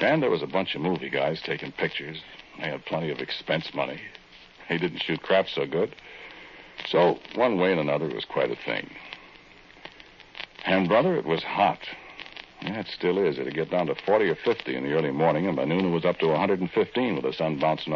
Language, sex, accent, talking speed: English, male, American, 215 wpm